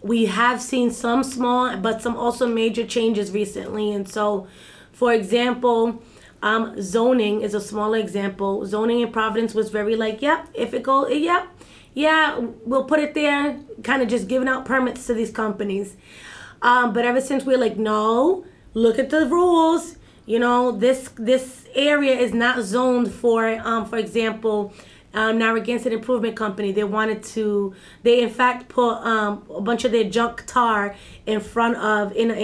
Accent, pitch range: American, 220-255 Hz